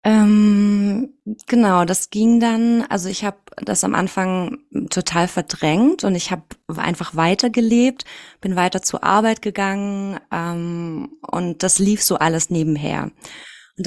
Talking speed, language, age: 140 wpm, German, 20-39